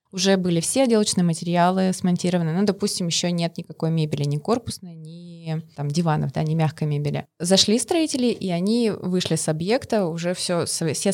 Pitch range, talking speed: 160-195 Hz, 170 wpm